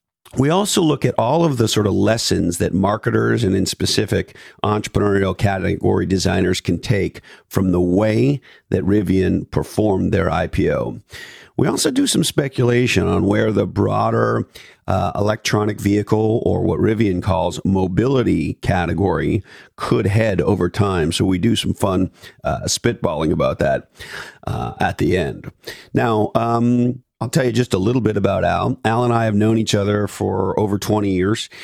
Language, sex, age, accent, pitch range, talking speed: English, male, 50-69, American, 100-120 Hz, 160 wpm